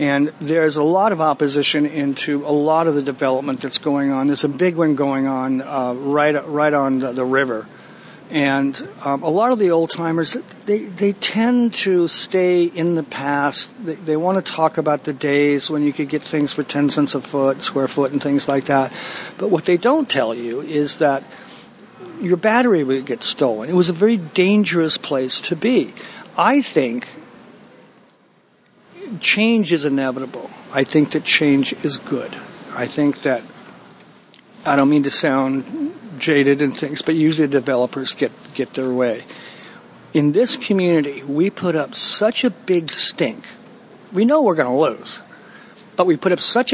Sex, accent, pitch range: male, American, 140-195 Hz